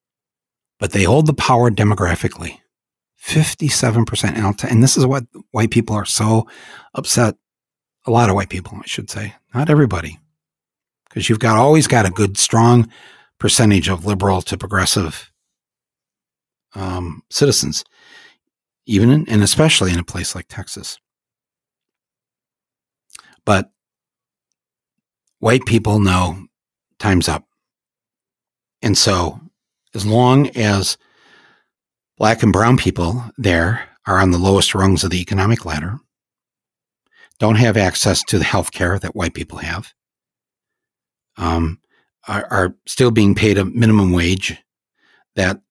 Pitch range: 95-120 Hz